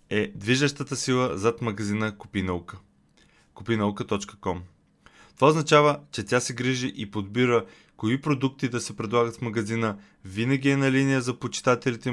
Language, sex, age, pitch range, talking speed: Bulgarian, male, 20-39, 100-125 Hz, 140 wpm